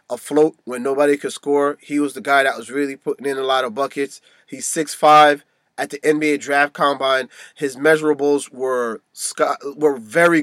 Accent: American